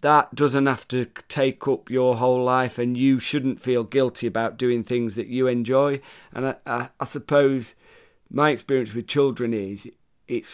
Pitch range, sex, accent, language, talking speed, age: 120-135 Hz, male, British, English, 175 wpm, 30-49